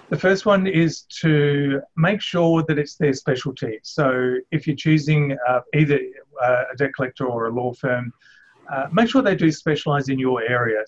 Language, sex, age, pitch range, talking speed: English, male, 30-49, 125-155 Hz, 180 wpm